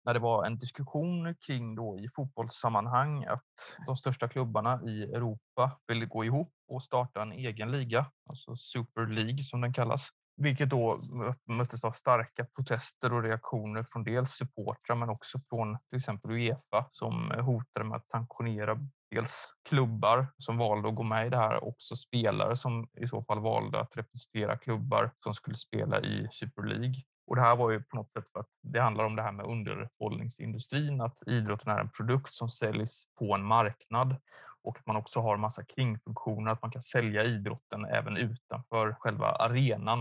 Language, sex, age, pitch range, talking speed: Swedish, male, 20-39, 110-130 Hz, 180 wpm